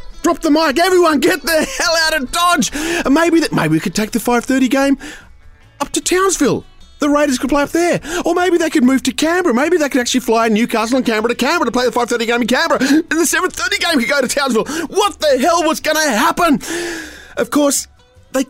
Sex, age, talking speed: male, 30-49, 230 wpm